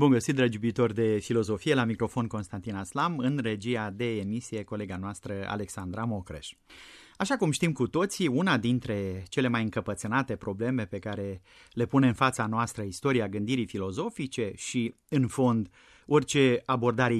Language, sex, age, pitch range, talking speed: Romanian, male, 30-49, 110-150 Hz, 150 wpm